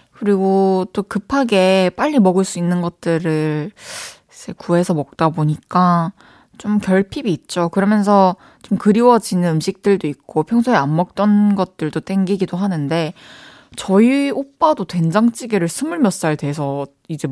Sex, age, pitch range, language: female, 20-39, 185-270 Hz, Korean